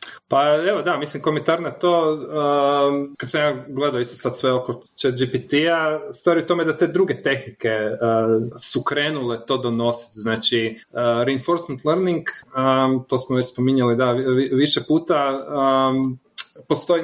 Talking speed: 150 wpm